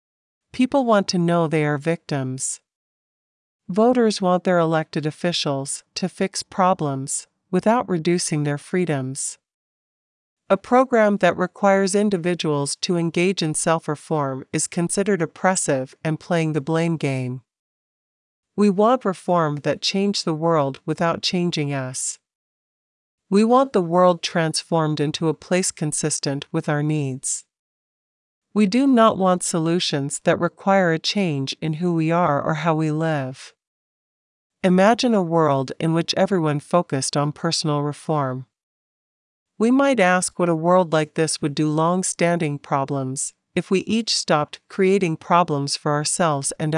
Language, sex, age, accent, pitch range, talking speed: English, female, 50-69, American, 150-190 Hz, 135 wpm